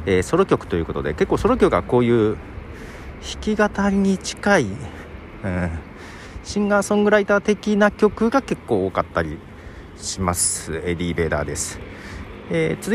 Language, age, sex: Japanese, 40-59, male